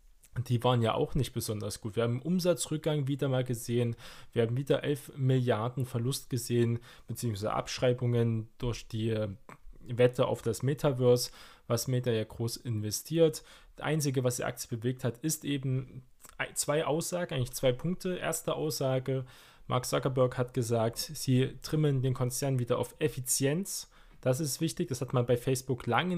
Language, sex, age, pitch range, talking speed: German, male, 20-39, 120-145 Hz, 160 wpm